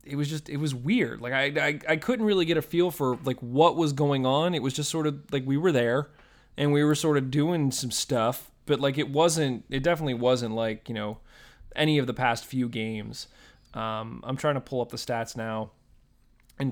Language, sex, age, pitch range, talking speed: English, male, 20-39, 120-150 Hz, 230 wpm